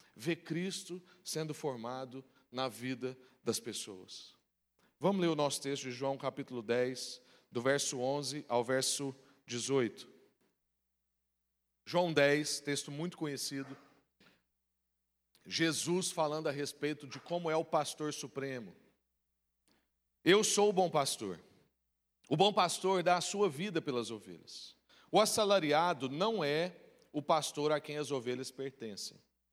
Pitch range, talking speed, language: 130-180 Hz, 130 wpm, Portuguese